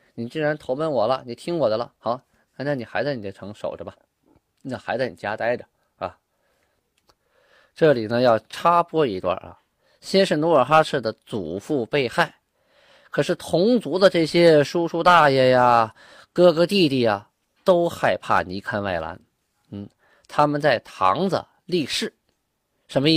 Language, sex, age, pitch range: Chinese, male, 20-39, 110-155 Hz